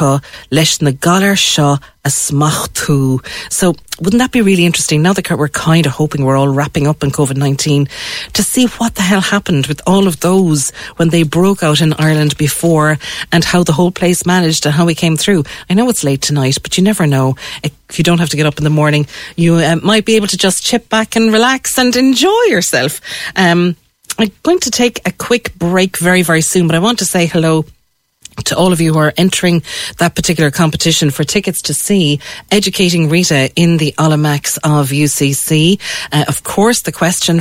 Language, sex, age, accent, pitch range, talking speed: English, female, 40-59, Irish, 150-195 Hz, 195 wpm